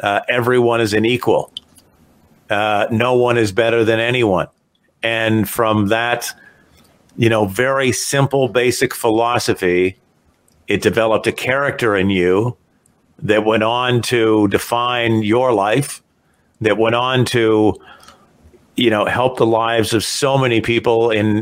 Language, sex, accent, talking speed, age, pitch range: English, male, American, 135 wpm, 50-69, 110-125 Hz